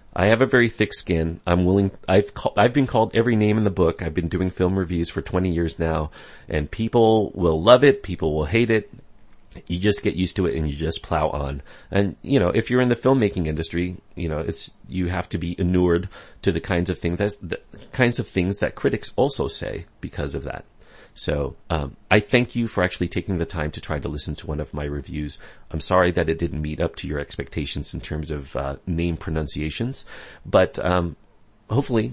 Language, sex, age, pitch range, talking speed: English, male, 40-59, 80-105 Hz, 220 wpm